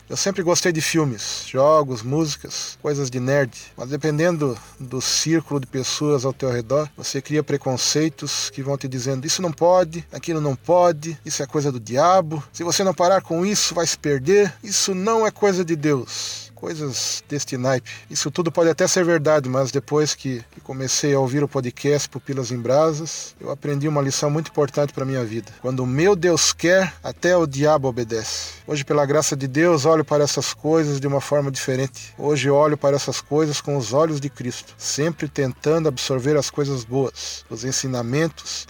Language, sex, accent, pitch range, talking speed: Portuguese, male, Brazilian, 130-155 Hz, 190 wpm